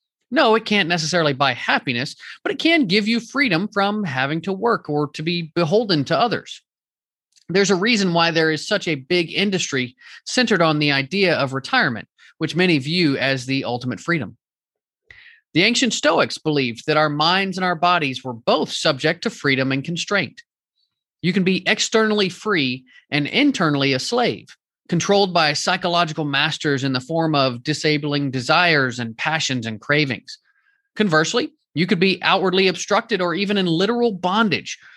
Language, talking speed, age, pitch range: English, 165 wpm, 30-49, 145-205 Hz